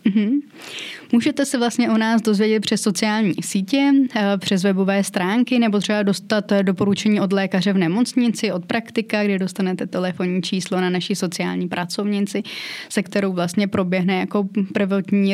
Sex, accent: female, native